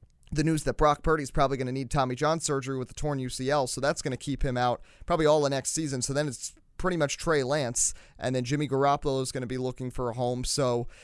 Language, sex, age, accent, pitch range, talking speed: English, male, 30-49, American, 135-175 Hz, 265 wpm